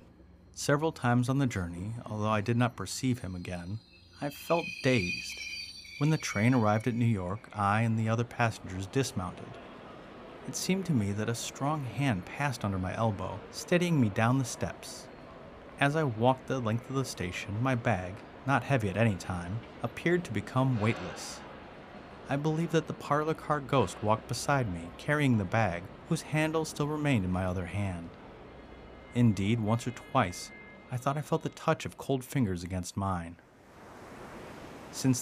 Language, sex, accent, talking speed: English, male, American, 170 wpm